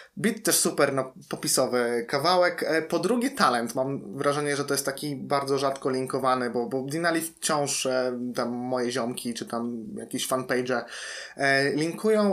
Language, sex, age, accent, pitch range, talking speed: Polish, male, 20-39, native, 130-150 Hz, 145 wpm